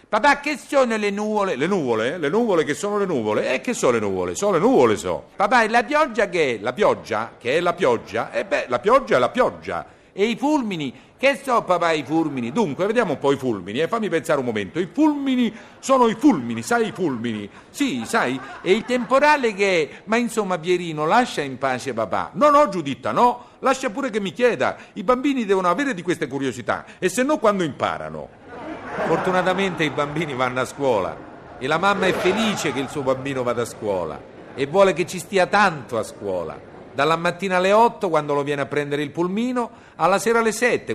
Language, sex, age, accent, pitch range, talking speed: Italian, male, 50-69, native, 155-230 Hz, 210 wpm